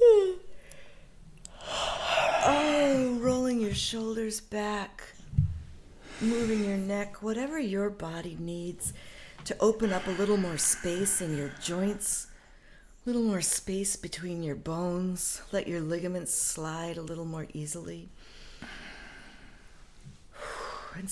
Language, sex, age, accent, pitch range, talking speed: English, female, 50-69, American, 160-195 Hz, 110 wpm